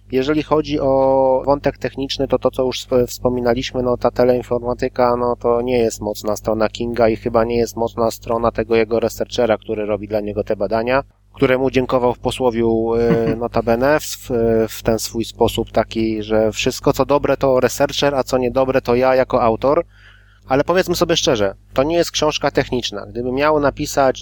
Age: 20-39